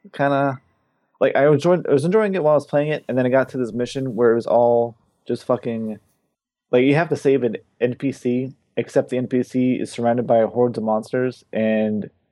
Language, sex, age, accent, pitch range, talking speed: English, male, 20-39, American, 115-140 Hz, 220 wpm